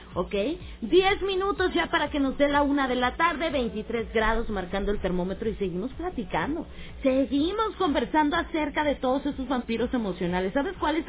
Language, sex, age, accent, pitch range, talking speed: Spanish, female, 30-49, Mexican, 230-340 Hz, 175 wpm